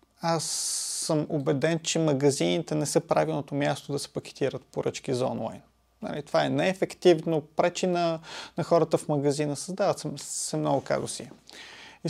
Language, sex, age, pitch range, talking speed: Bulgarian, male, 30-49, 155-195 Hz, 145 wpm